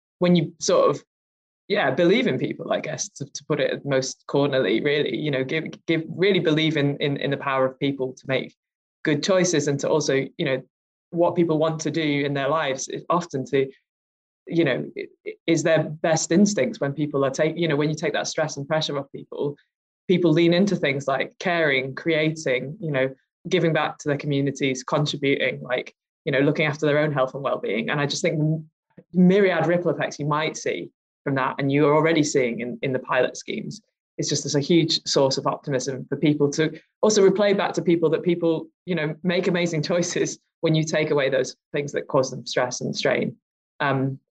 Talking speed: 210 wpm